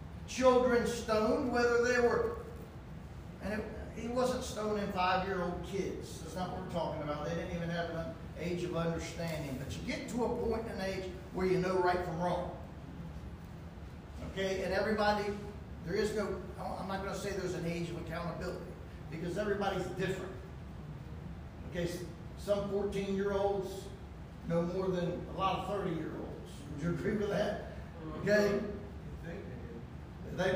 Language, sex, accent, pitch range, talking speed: English, male, American, 165-200 Hz, 150 wpm